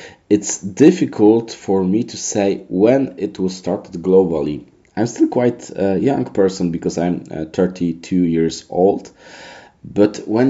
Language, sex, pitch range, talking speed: English, male, 85-95 Hz, 135 wpm